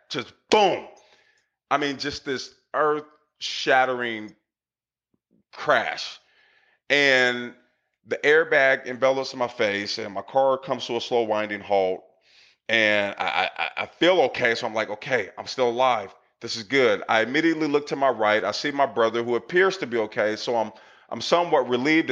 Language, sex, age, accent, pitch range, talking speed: English, male, 30-49, American, 120-165 Hz, 165 wpm